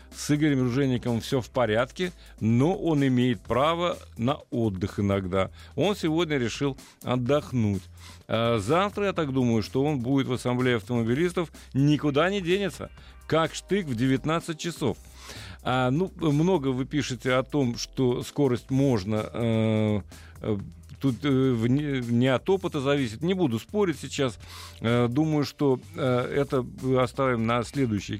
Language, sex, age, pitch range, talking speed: Russian, male, 40-59, 115-150 Hz, 125 wpm